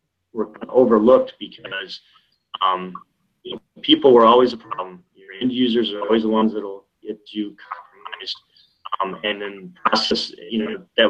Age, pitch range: 20-39, 100-125 Hz